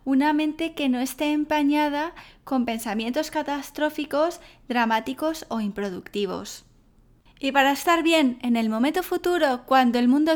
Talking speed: 135 wpm